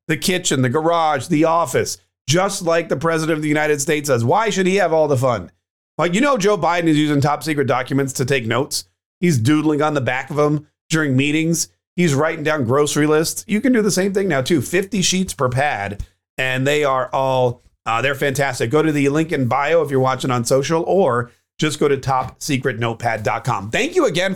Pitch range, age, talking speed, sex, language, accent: 130-170 Hz, 40-59, 215 wpm, male, English, American